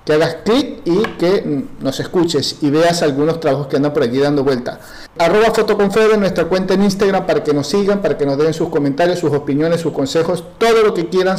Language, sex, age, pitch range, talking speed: Spanish, male, 50-69, 150-185 Hz, 215 wpm